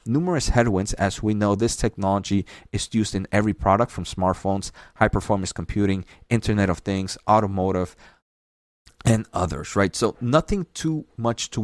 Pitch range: 100-120 Hz